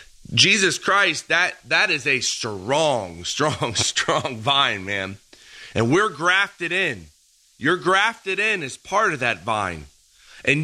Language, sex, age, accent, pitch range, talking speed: English, male, 30-49, American, 115-170 Hz, 135 wpm